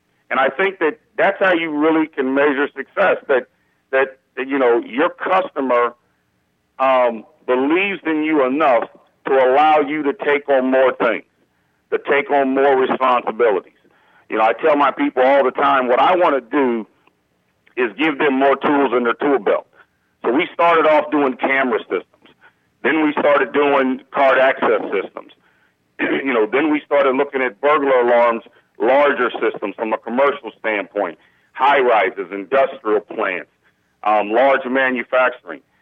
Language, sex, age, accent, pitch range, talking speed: English, male, 50-69, American, 120-145 Hz, 155 wpm